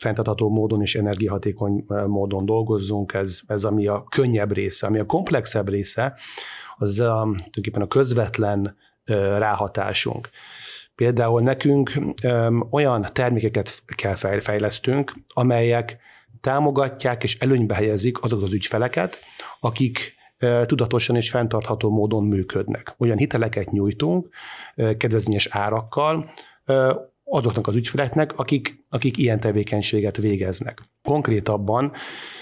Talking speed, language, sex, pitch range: 100 wpm, Hungarian, male, 105-130 Hz